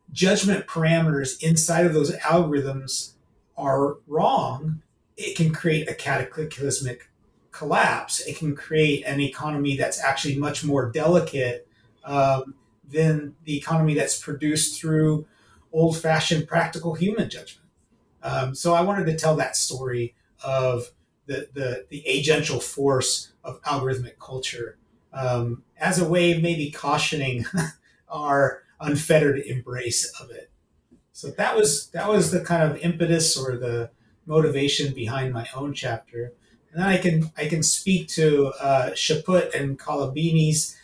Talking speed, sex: 135 wpm, male